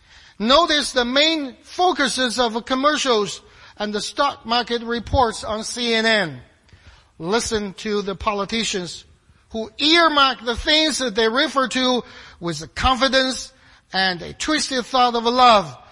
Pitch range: 170-255 Hz